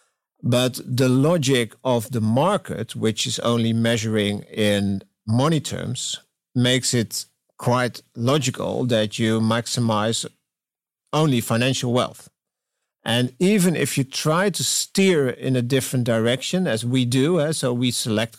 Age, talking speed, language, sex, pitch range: 50-69, 130 wpm, English, male, 115-145 Hz